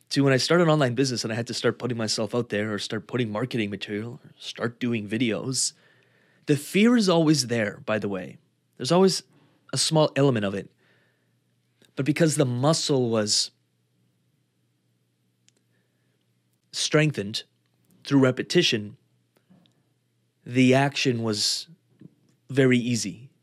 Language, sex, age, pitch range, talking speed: English, male, 30-49, 105-140 Hz, 135 wpm